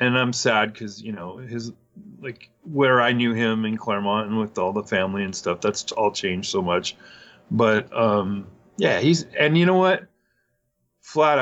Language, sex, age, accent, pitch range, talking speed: English, male, 30-49, American, 110-140 Hz, 185 wpm